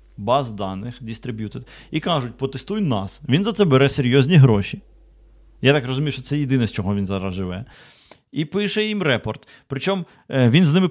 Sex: male